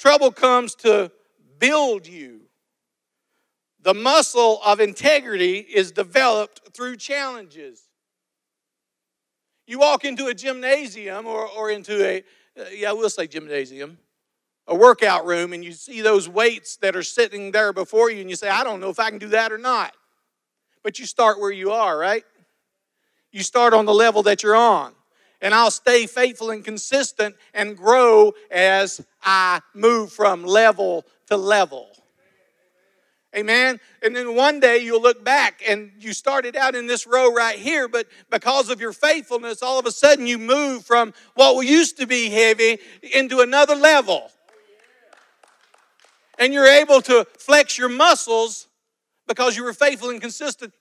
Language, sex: English, male